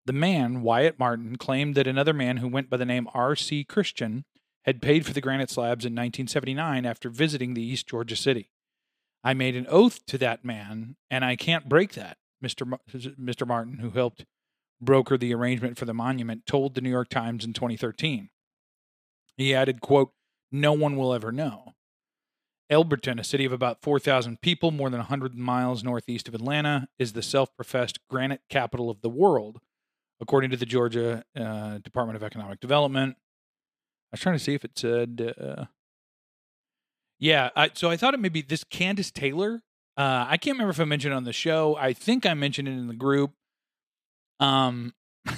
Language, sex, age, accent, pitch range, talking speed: English, male, 40-59, American, 120-150 Hz, 180 wpm